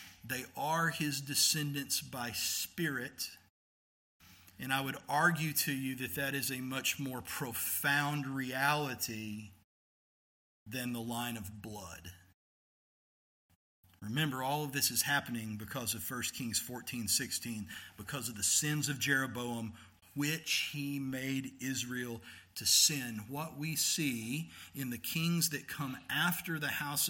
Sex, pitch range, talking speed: male, 120-160 Hz, 135 wpm